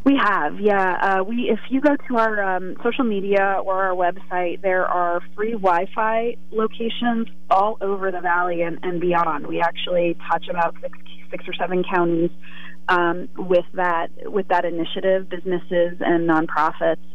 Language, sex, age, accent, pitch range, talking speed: English, female, 30-49, American, 170-200 Hz, 160 wpm